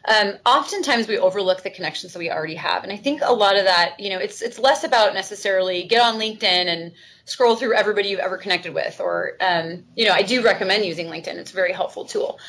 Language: English